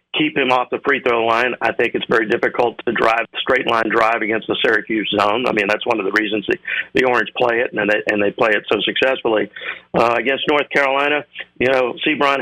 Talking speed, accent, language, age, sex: 220 wpm, American, English, 50-69, male